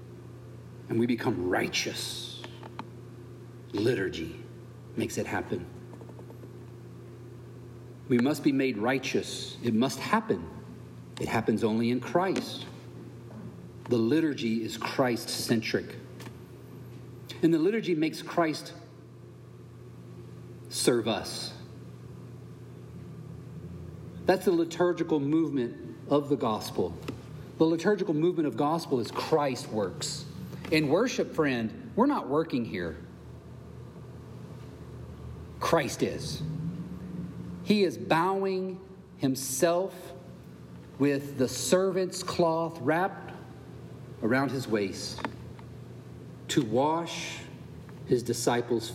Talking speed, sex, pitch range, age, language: 90 wpm, male, 115-160 Hz, 50-69, English